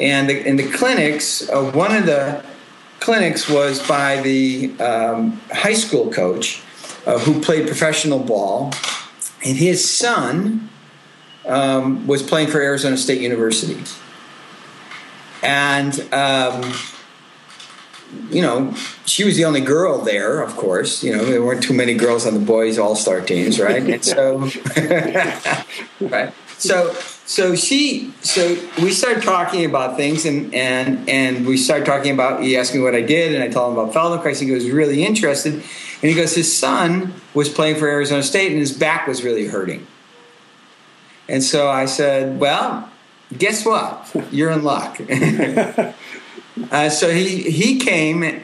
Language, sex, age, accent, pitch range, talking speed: English, male, 50-69, American, 130-170 Hz, 150 wpm